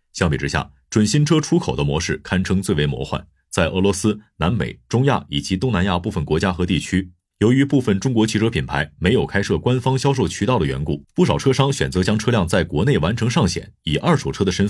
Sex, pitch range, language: male, 85-115 Hz, Chinese